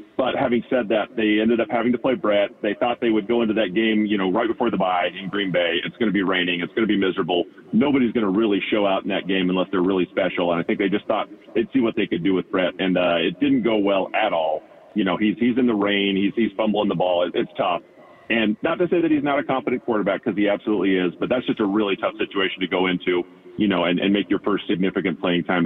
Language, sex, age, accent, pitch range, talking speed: English, male, 40-59, American, 100-120 Hz, 285 wpm